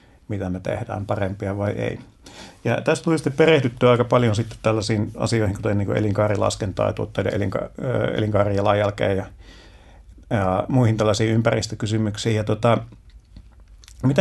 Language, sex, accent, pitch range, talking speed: Finnish, male, native, 95-115 Hz, 120 wpm